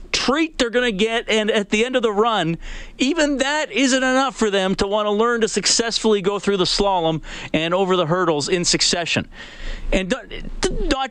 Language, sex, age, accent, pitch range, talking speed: English, male, 40-59, American, 175-245 Hz, 185 wpm